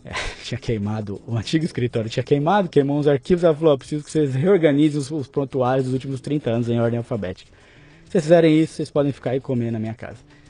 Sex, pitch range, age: male, 110-160 Hz, 20-39